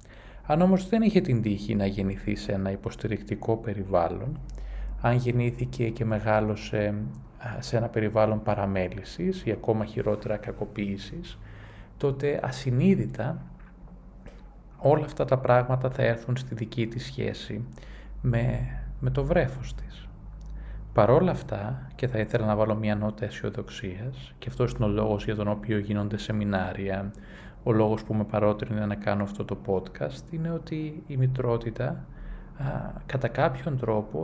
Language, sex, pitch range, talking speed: Greek, male, 105-130 Hz, 135 wpm